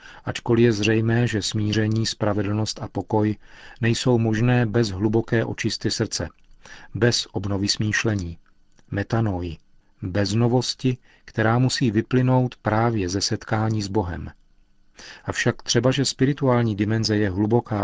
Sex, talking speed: male, 120 wpm